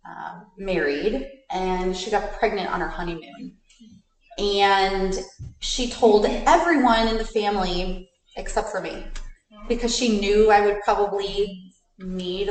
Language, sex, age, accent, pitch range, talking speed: English, female, 30-49, American, 180-235 Hz, 125 wpm